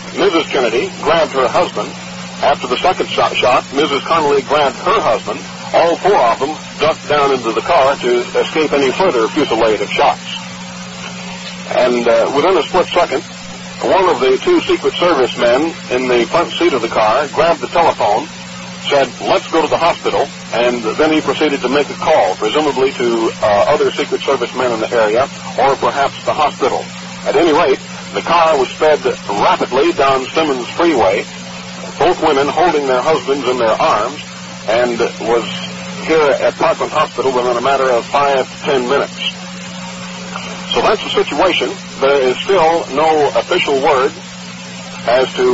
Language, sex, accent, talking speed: English, male, American, 165 wpm